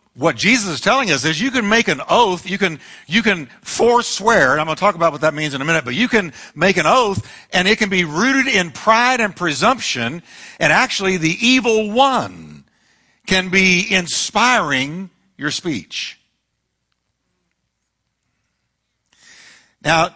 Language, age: English, 60-79